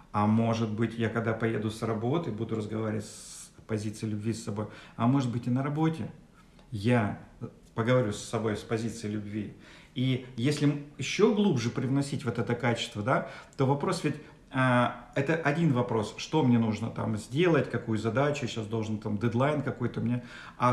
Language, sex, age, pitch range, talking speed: Russian, male, 50-69, 115-155 Hz, 165 wpm